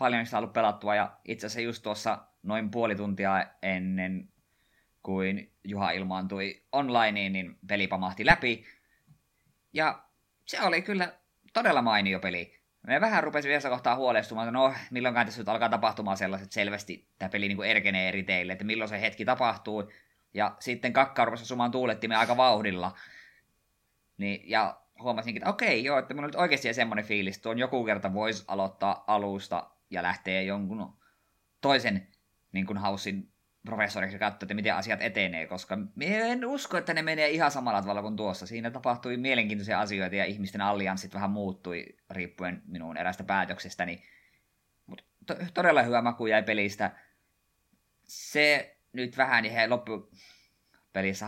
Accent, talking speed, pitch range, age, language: native, 150 wpm, 95-120 Hz, 20-39, Finnish